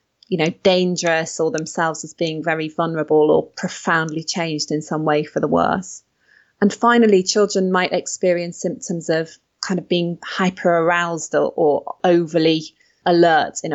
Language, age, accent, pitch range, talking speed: English, 20-39, British, 160-190 Hz, 155 wpm